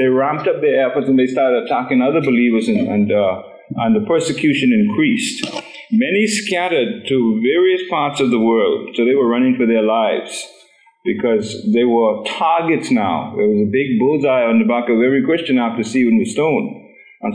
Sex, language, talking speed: male, English, 185 wpm